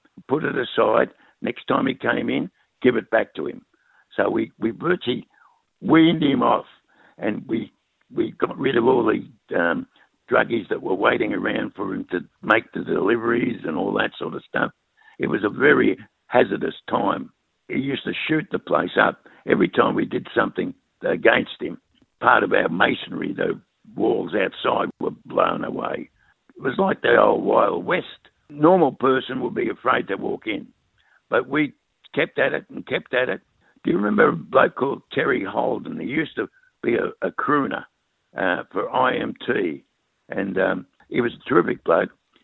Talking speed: 175 wpm